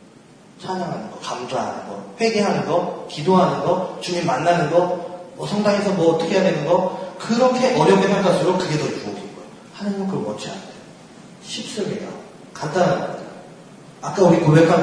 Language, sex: Korean, male